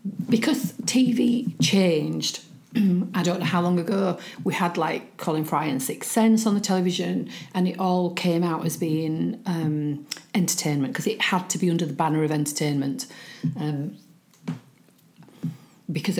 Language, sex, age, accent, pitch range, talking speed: English, female, 40-59, British, 155-185 Hz, 150 wpm